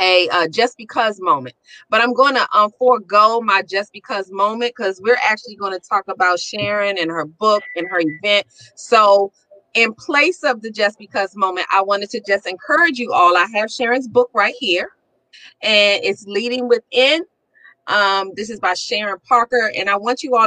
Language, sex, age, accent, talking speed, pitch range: English, female, 30-49, American, 190 wpm, 185-235 Hz